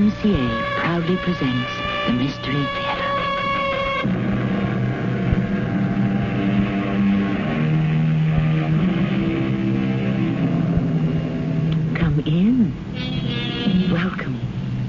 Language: English